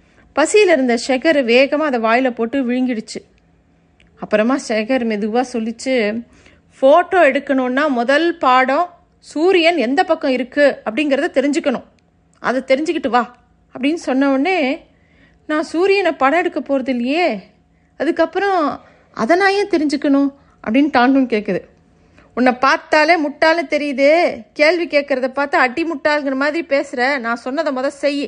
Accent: native